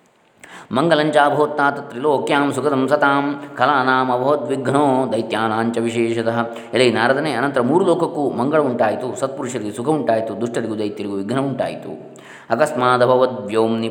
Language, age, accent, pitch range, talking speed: Kannada, 20-39, native, 115-130 Hz, 90 wpm